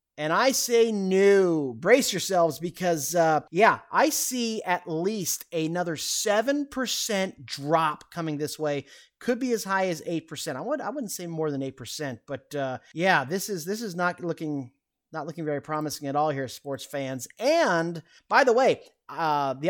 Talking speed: 175 wpm